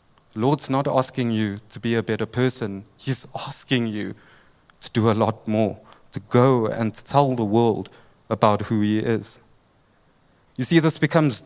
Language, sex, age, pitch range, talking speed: English, male, 30-49, 115-145 Hz, 170 wpm